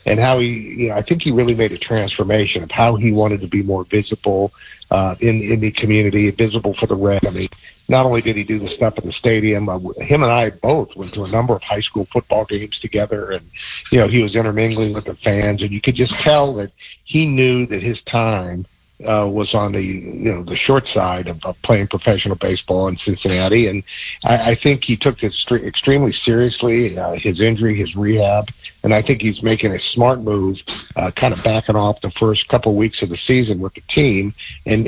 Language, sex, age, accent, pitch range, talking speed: English, male, 50-69, American, 100-115 Hz, 225 wpm